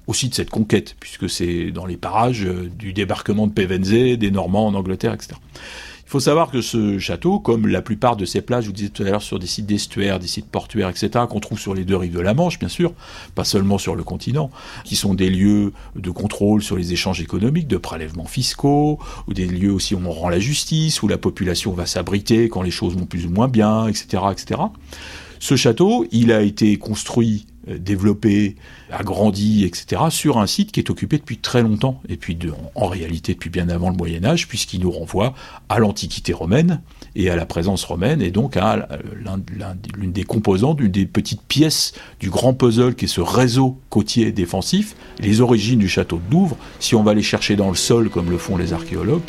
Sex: male